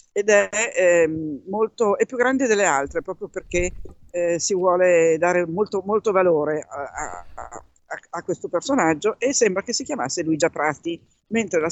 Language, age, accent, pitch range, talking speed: Italian, 50-69, native, 160-205 Hz, 165 wpm